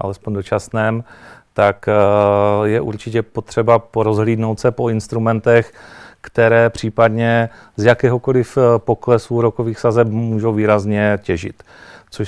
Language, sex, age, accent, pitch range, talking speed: Czech, male, 40-59, native, 105-115 Hz, 105 wpm